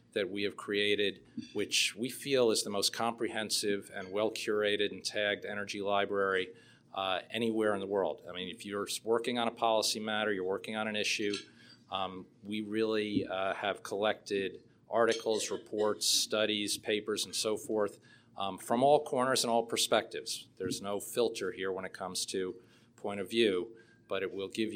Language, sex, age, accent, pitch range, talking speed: English, male, 40-59, American, 100-115 Hz, 175 wpm